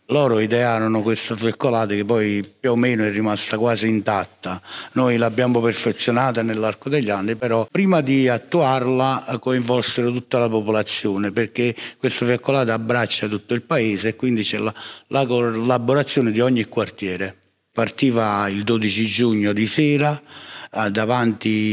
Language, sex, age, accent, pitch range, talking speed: Italian, male, 60-79, native, 105-120 Hz, 135 wpm